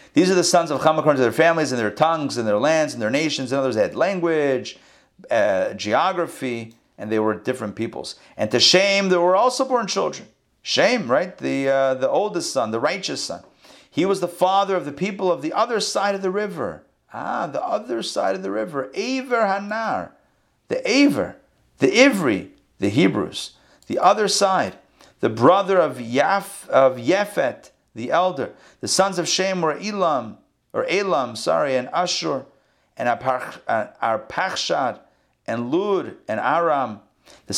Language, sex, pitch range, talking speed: English, male, 130-190 Hz, 175 wpm